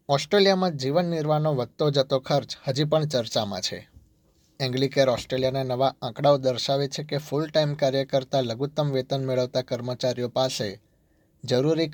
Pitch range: 125-145 Hz